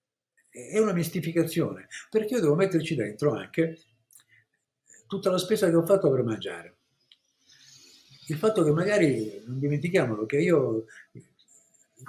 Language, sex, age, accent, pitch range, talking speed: Italian, male, 50-69, native, 130-185 Hz, 130 wpm